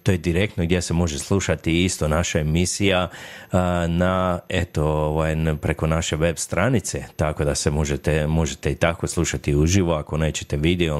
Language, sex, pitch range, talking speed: Croatian, male, 80-95 Hz, 160 wpm